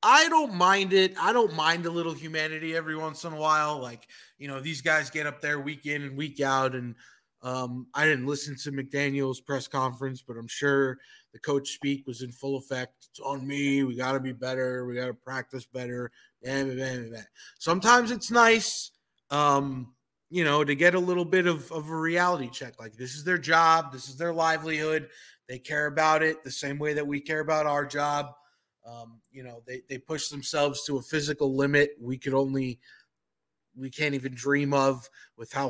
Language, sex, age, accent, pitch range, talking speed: English, male, 20-39, American, 130-155 Hz, 200 wpm